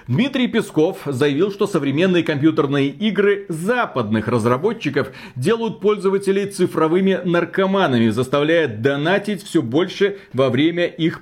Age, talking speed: 40-59, 105 wpm